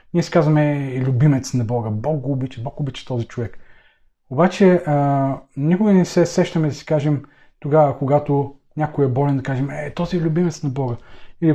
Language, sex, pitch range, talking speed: Bulgarian, male, 130-160 Hz, 185 wpm